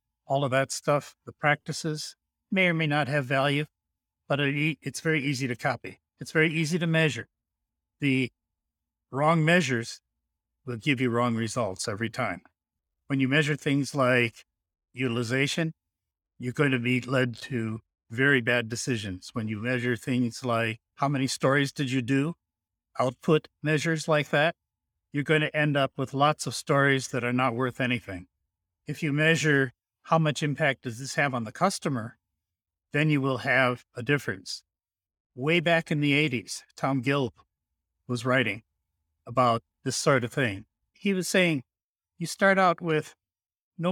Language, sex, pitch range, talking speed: English, male, 115-150 Hz, 160 wpm